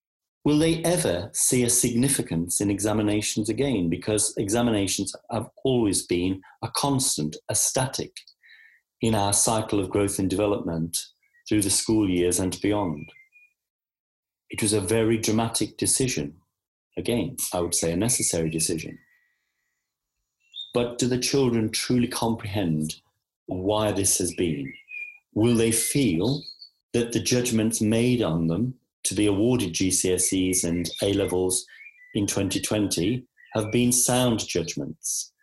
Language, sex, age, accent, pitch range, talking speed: English, male, 40-59, British, 95-125 Hz, 125 wpm